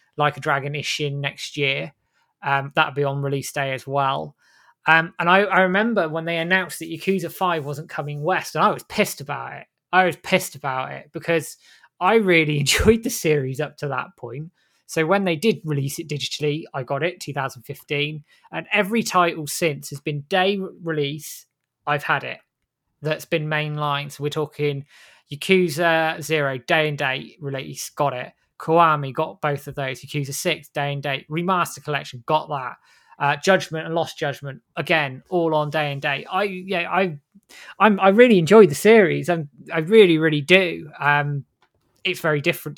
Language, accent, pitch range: English, British, 140-170 Hz